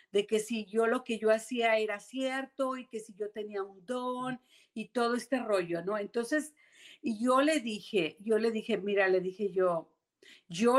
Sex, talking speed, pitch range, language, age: female, 190 wpm, 205-245 Hz, Spanish, 40-59